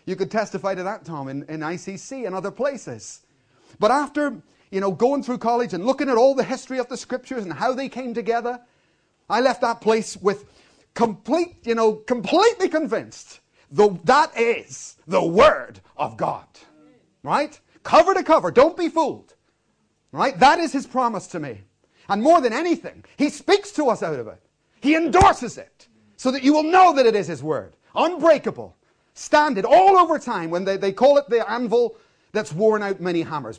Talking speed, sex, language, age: 190 wpm, male, English, 40-59